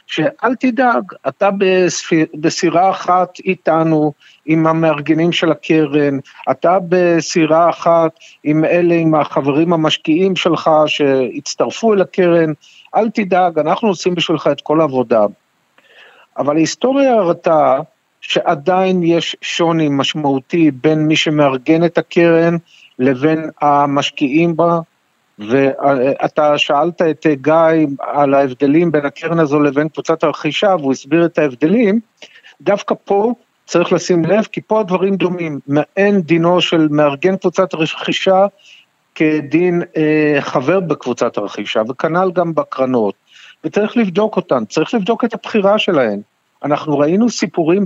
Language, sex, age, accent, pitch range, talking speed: Hebrew, male, 50-69, native, 150-185 Hz, 120 wpm